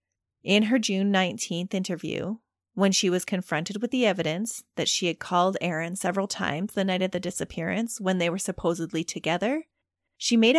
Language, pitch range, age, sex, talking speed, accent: English, 170-205 Hz, 30-49, female, 175 wpm, American